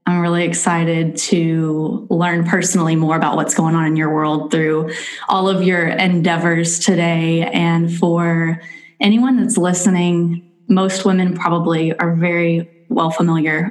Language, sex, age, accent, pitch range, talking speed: English, female, 10-29, American, 170-195 Hz, 140 wpm